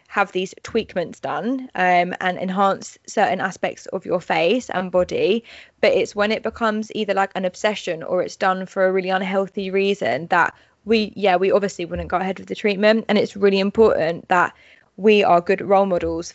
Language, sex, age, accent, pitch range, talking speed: English, female, 20-39, British, 185-220 Hz, 190 wpm